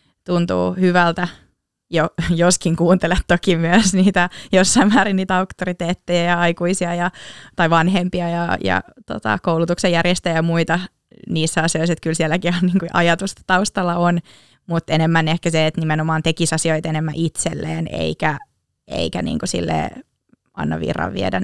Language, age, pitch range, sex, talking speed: Finnish, 20-39, 165-195 Hz, female, 150 wpm